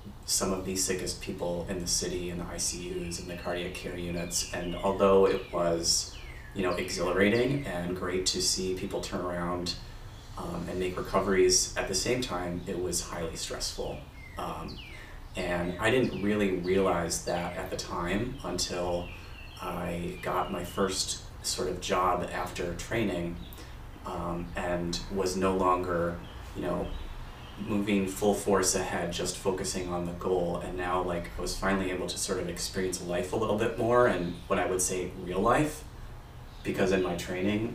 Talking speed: 165 wpm